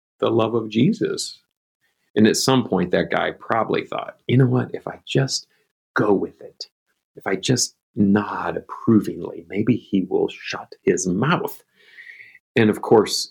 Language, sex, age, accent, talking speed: English, male, 40-59, American, 160 wpm